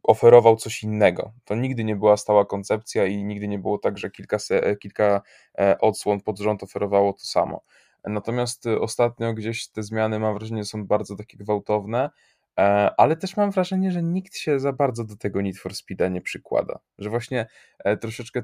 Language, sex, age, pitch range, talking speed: Polish, male, 20-39, 100-115 Hz, 175 wpm